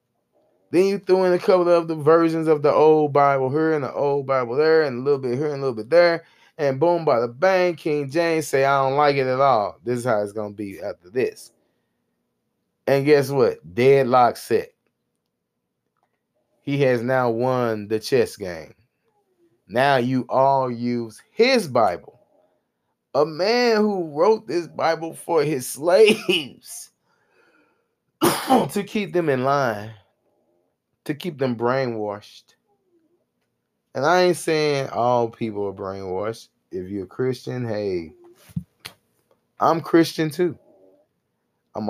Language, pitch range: English, 105-155 Hz